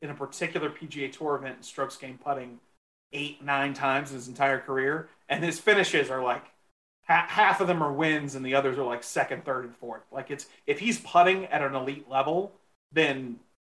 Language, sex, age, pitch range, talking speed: English, male, 30-49, 135-170 Hz, 195 wpm